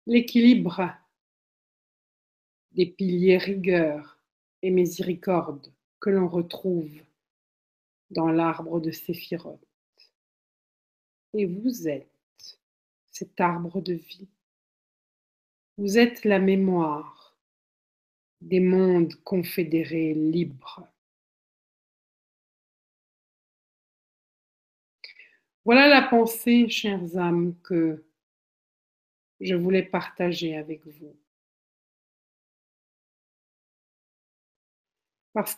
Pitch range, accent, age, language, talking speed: 170-220 Hz, French, 50-69, French, 65 wpm